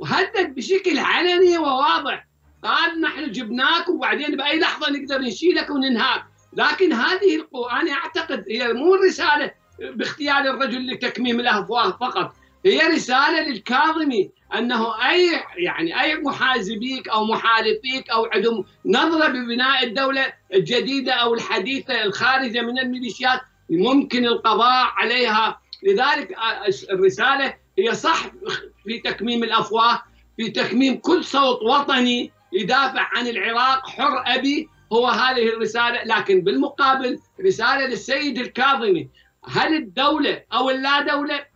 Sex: male